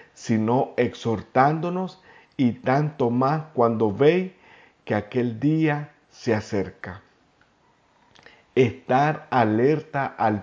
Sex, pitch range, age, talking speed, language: male, 110-145 Hz, 50-69, 85 wpm, Spanish